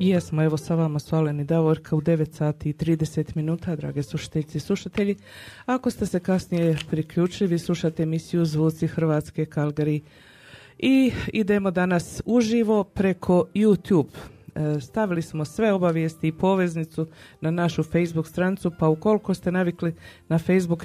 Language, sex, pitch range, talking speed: Croatian, female, 150-180 Hz, 145 wpm